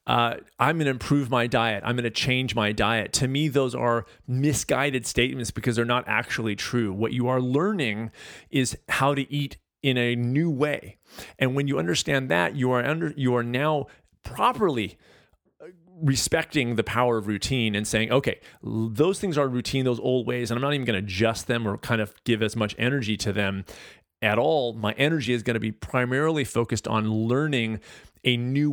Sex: male